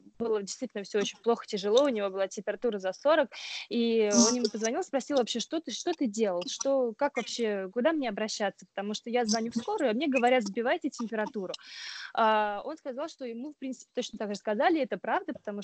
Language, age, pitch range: Russian, 20-39, 205-255 Hz